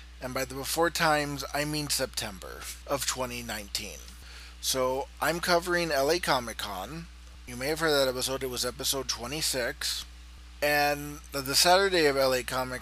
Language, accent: English, American